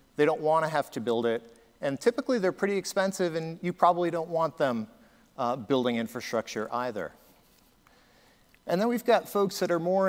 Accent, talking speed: American, 185 wpm